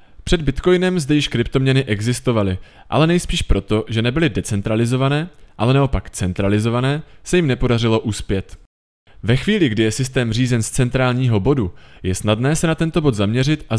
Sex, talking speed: male, 155 wpm